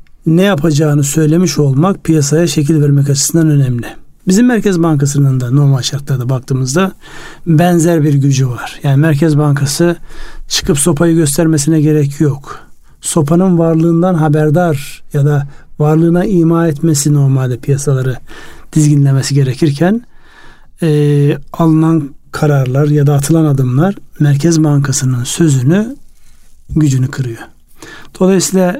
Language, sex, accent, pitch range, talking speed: Turkish, male, native, 140-165 Hz, 110 wpm